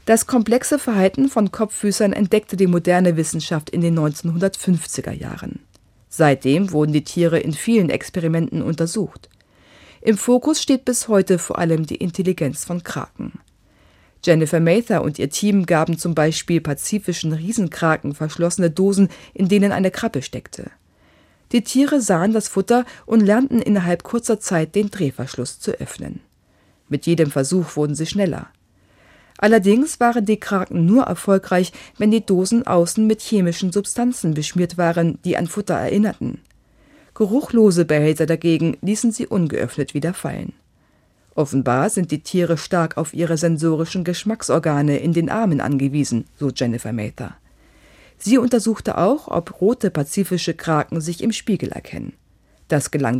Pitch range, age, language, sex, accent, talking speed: 155-210 Hz, 40-59, German, female, German, 140 wpm